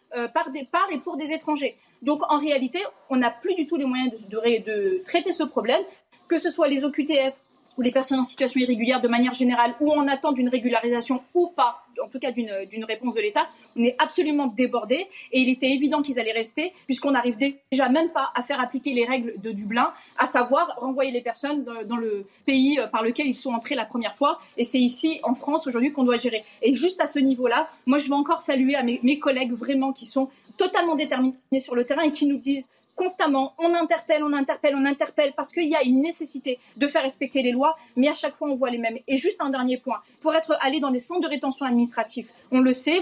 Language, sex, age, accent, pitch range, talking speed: French, female, 30-49, French, 250-305 Hz, 235 wpm